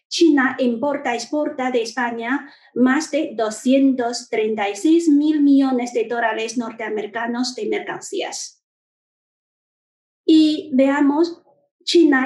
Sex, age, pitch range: female, 30-49, 235-295 Hz